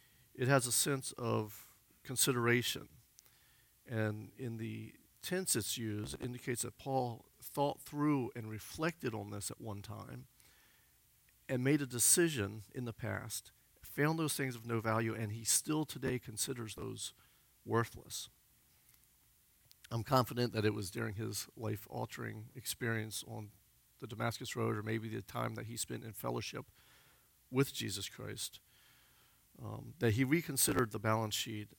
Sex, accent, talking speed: male, American, 145 wpm